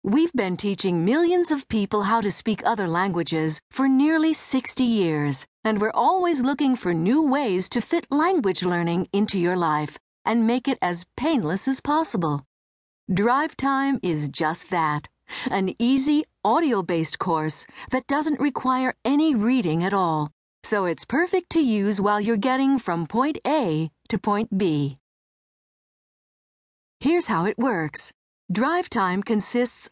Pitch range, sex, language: 175-270 Hz, female, English